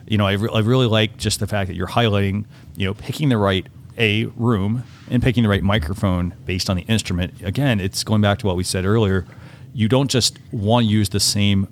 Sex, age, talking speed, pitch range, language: male, 40-59, 230 wpm, 100-120 Hz, English